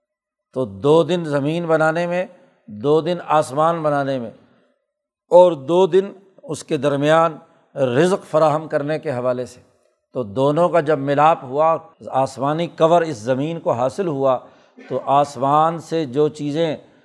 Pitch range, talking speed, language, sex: 140-160 Hz, 145 wpm, Urdu, male